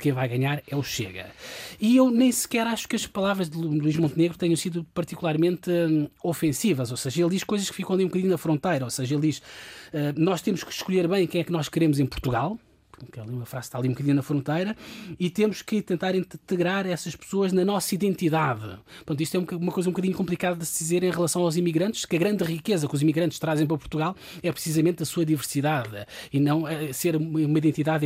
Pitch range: 145-185 Hz